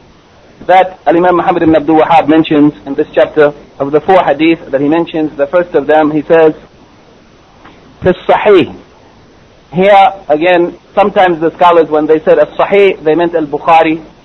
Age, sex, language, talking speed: 50-69, male, English, 155 wpm